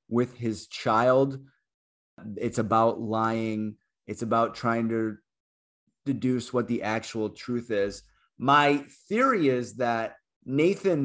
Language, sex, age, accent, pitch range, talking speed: English, male, 30-49, American, 115-145 Hz, 115 wpm